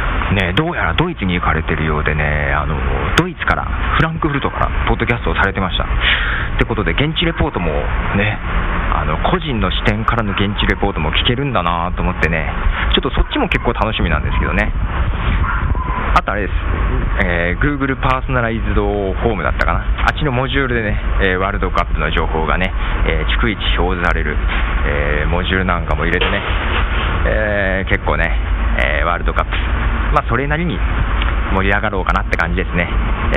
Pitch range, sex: 80-100 Hz, male